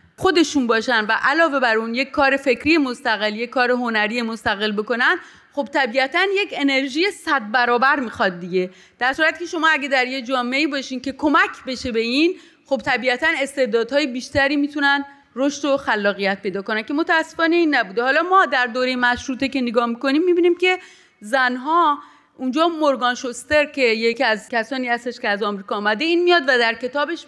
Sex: female